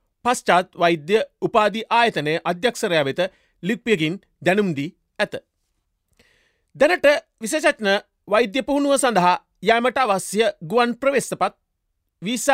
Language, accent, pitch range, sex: Japanese, Indian, 180-240 Hz, male